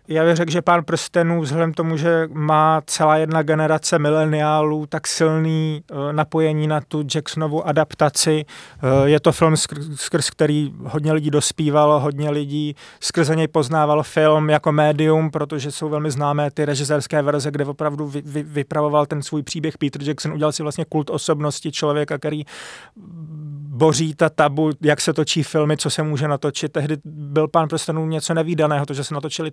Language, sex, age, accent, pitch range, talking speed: Czech, male, 30-49, native, 150-155 Hz, 175 wpm